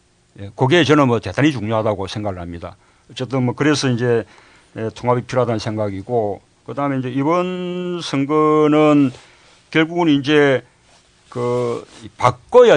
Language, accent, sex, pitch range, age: Korean, native, male, 110-145 Hz, 50-69